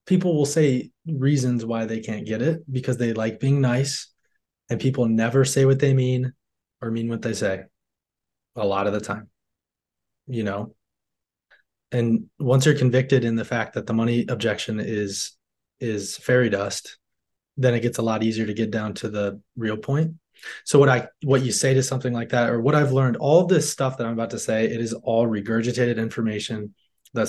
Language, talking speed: English, 195 wpm